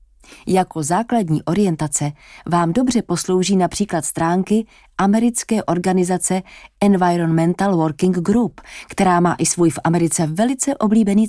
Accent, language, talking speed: Czech, English, 110 wpm